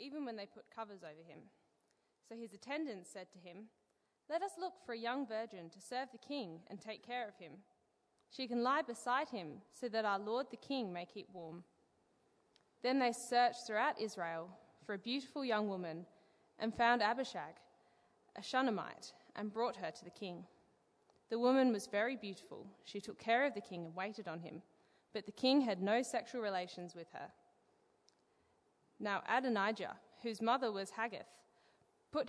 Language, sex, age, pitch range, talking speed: English, female, 20-39, 195-245 Hz, 175 wpm